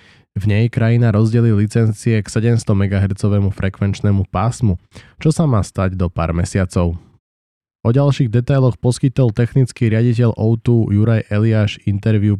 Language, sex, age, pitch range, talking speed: Slovak, male, 20-39, 95-115 Hz, 130 wpm